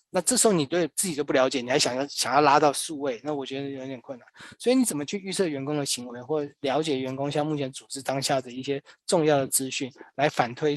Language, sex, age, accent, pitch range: Chinese, male, 20-39, native, 140-170 Hz